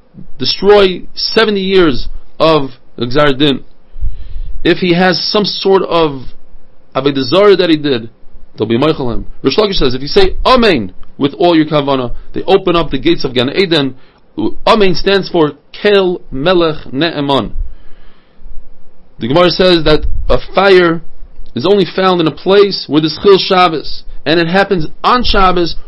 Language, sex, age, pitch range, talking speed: English, male, 40-59, 150-190 Hz, 155 wpm